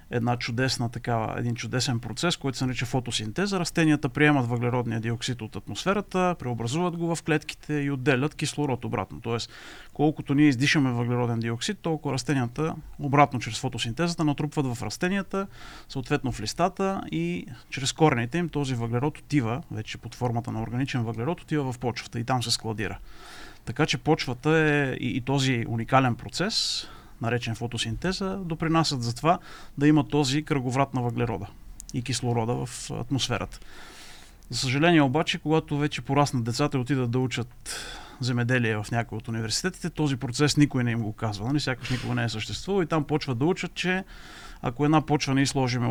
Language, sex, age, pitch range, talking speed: Bulgarian, male, 40-59, 120-150 Hz, 165 wpm